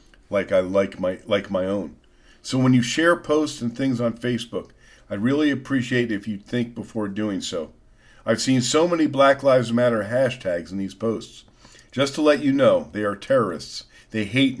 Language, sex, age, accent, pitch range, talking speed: English, male, 50-69, American, 115-150 Hz, 190 wpm